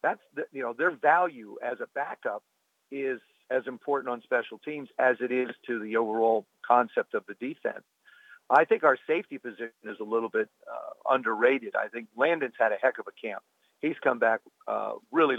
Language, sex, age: English, male, 50-69